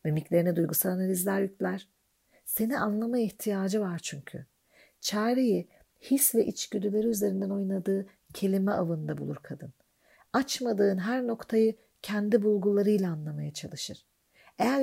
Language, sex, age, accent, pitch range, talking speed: Turkish, female, 50-69, native, 185-225 Hz, 110 wpm